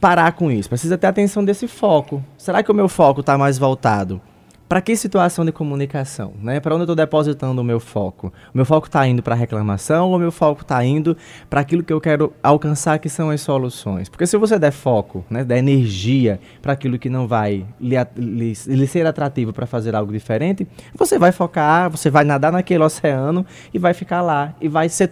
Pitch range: 120-160 Hz